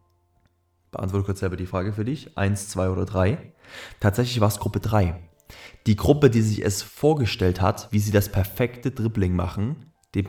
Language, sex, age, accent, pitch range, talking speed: German, male, 20-39, German, 95-110 Hz, 175 wpm